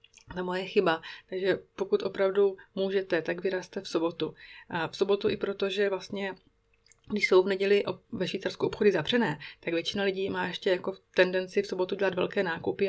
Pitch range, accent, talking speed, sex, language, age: 160-190 Hz, native, 175 wpm, female, Czech, 30-49